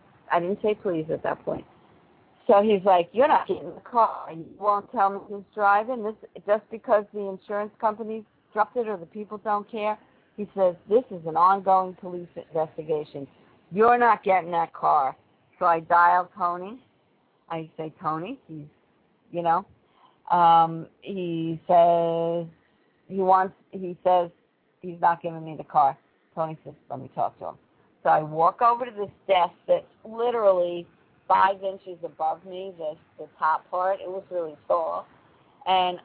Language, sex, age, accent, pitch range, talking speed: English, female, 50-69, American, 165-200 Hz, 165 wpm